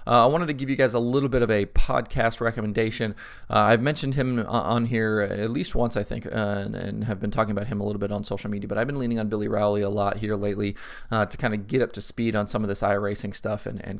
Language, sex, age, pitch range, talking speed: English, male, 30-49, 100-110 Hz, 285 wpm